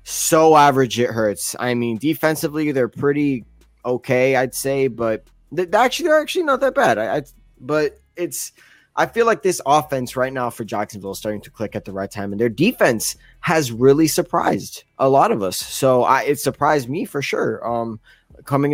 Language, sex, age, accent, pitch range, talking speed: English, male, 20-39, American, 115-155 Hz, 190 wpm